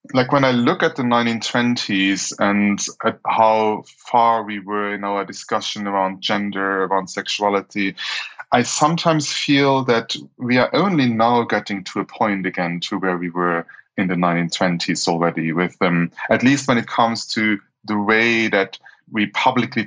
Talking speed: 160 wpm